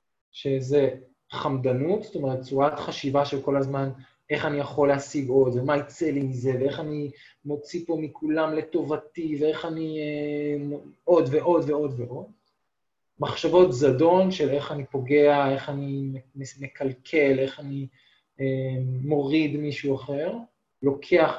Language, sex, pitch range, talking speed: Hebrew, male, 135-155 Hz, 130 wpm